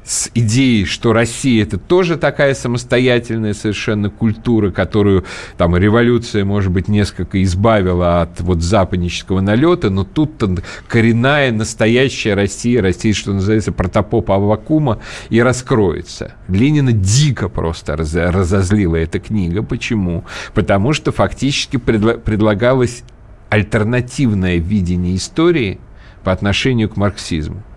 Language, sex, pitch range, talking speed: Russian, male, 95-120 Hz, 115 wpm